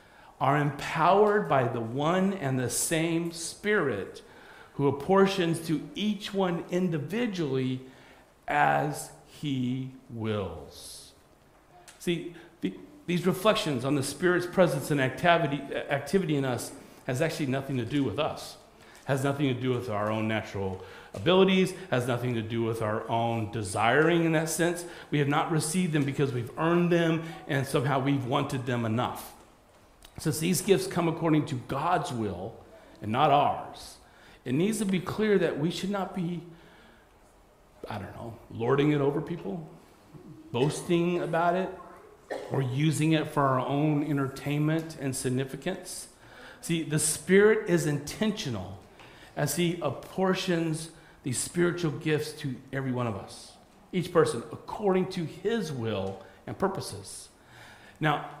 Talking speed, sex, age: 140 wpm, male, 40-59